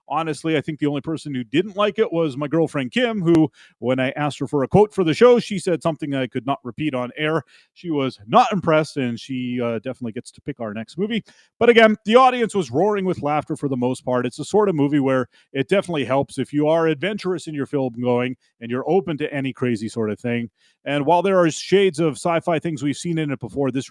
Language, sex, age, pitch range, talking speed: English, male, 30-49, 125-165 Hz, 250 wpm